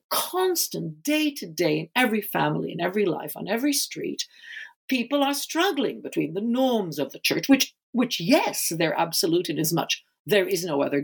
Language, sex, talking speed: English, female, 175 wpm